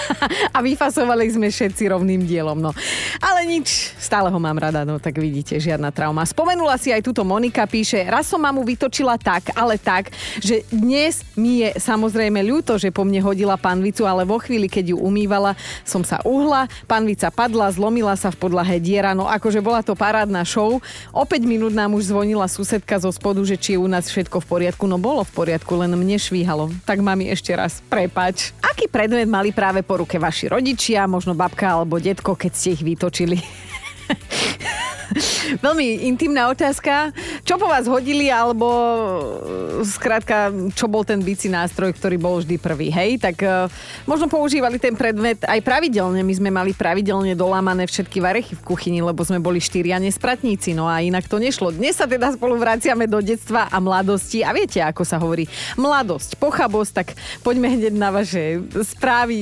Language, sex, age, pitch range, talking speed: Slovak, female, 30-49, 185-240 Hz, 180 wpm